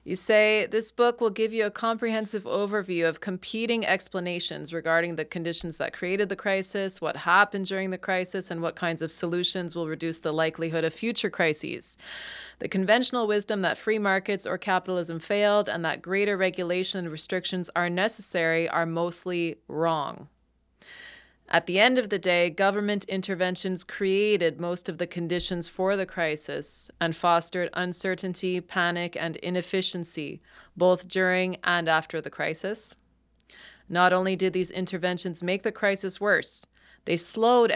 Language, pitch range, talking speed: English, 170-205 Hz, 155 wpm